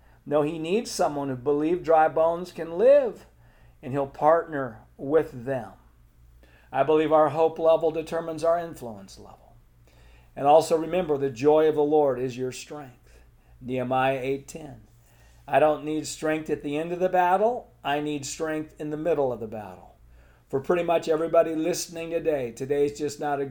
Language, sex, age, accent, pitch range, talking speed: English, male, 50-69, American, 120-160 Hz, 170 wpm